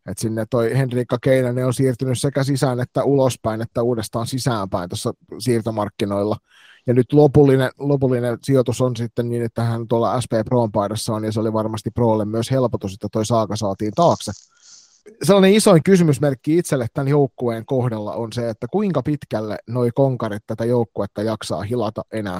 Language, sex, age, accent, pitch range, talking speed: Finnish, male, 30-49, native, 115-135 Hz, 165 wpm